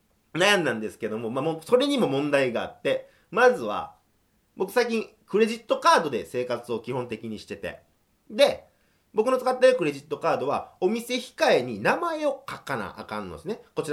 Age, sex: 40-59, male